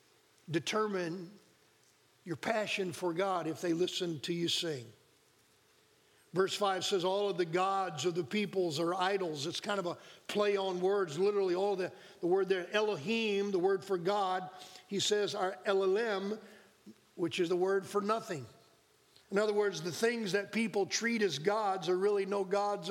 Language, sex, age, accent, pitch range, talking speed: English, male, 50-69, American, 180-215 Hz, 170 wpm